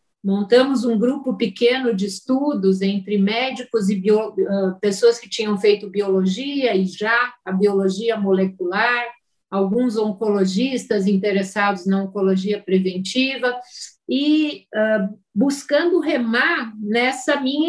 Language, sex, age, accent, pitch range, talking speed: Portuguese, female, 50-69, Brazilian, 195-245 Hz, 100 wpm